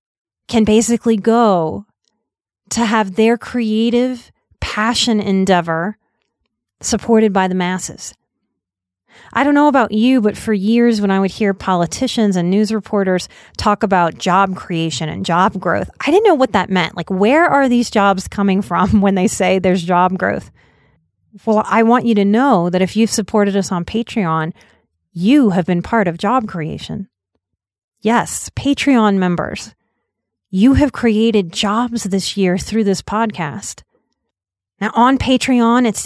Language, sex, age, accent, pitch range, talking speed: English, female, 30-49, American, 185-230 Hz, 150 wpm